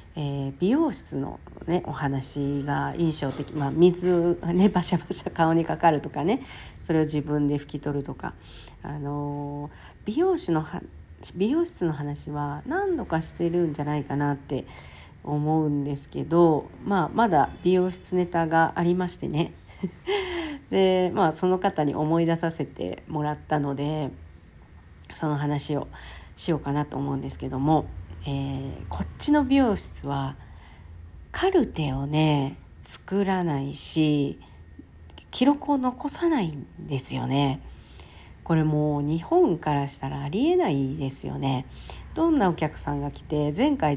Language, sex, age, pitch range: Japanese, female, 50-69, 140-180 Hz